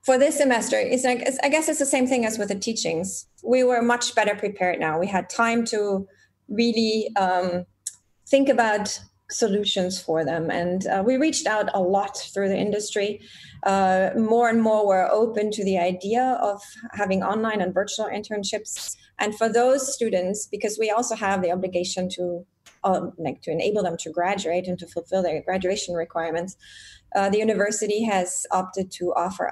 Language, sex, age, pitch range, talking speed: English, female, 30-49, 180-215 Hz, 180 wpm